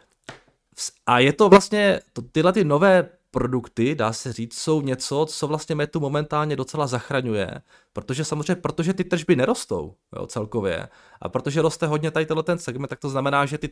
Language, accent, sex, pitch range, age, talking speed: Czech, native, male, 120-150 Hz, 20-39, 175 wpm